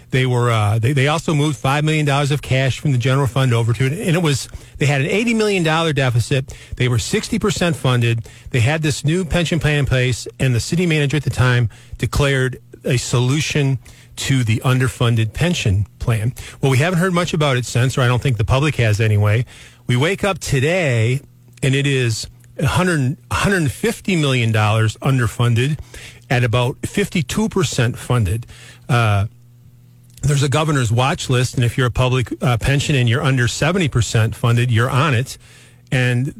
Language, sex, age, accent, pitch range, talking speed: English, male, 40-59, American, 120-145 Hz, 175 wpm